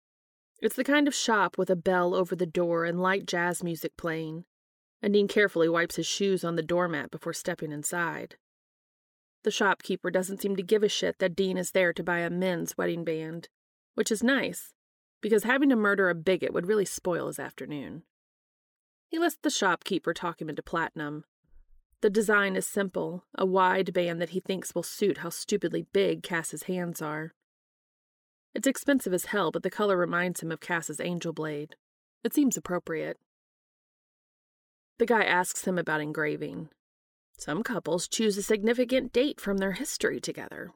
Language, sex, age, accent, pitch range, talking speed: English, female, 30-49, American, 165-210 Hz, 175 wpm